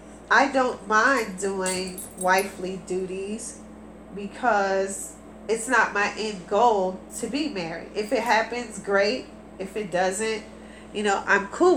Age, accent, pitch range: 30-49, American, 190-235 Hz